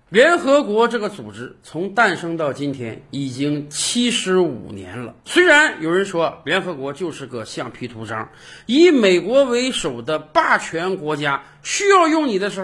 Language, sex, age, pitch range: Chinese, male, 50-69, 160-265 Hz